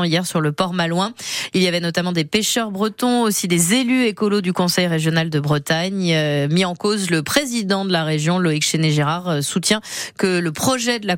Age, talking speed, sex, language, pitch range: 20-39, 205 wpm, female, French, 165-230 Hz